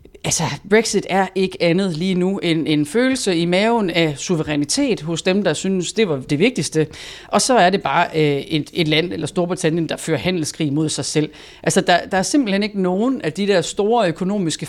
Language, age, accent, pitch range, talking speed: Danish, 30-49, native, 160-205 Hz, 215 wpm